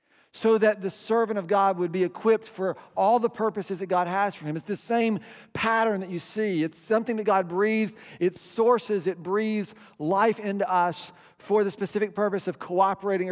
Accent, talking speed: American, 195 wpm